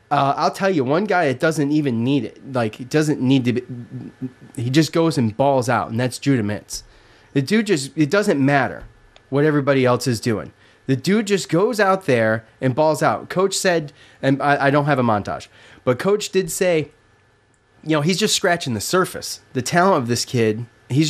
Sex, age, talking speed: male, 30-49, 210 wpm